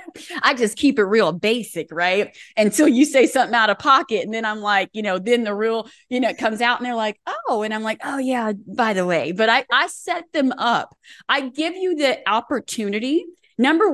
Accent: American